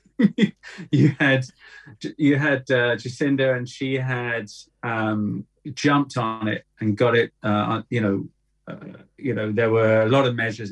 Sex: male